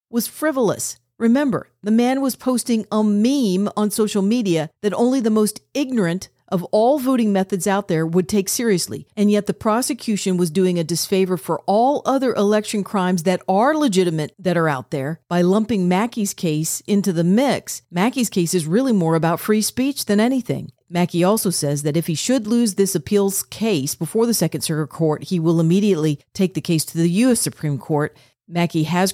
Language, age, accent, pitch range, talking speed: English, 40-59, American, 165-210 Hz, 190 wpm